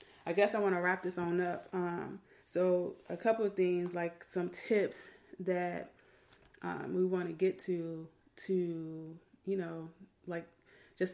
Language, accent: English, American